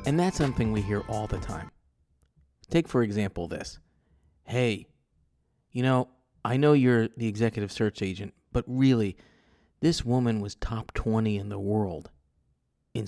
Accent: American